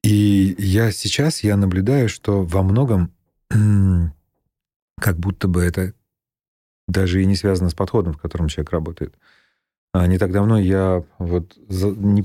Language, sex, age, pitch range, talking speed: Russian, male, 30-49, 85-105 Hz, 140 wpm